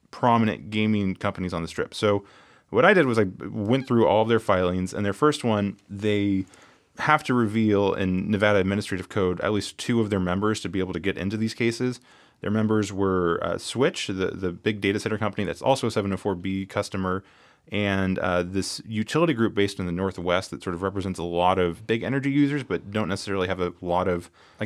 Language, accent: English, American